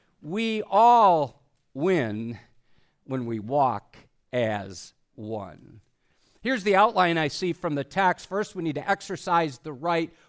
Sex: male